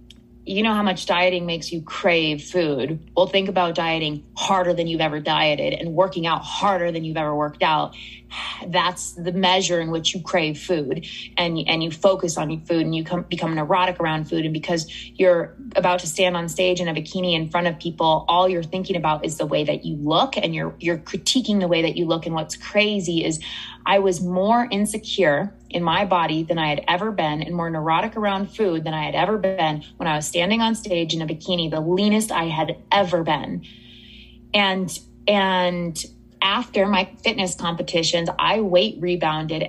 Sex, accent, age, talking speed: female, American, 20-39, 200 wpm